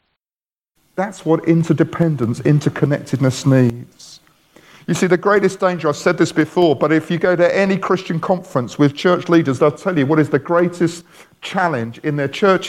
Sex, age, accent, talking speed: male, 50-69, British, 170 wpm